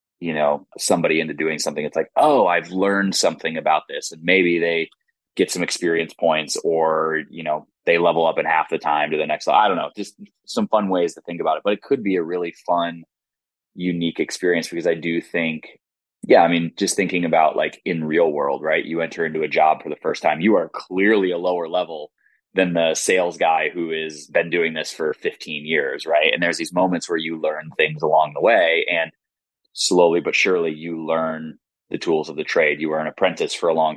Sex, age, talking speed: male, 20-39, 225 wpm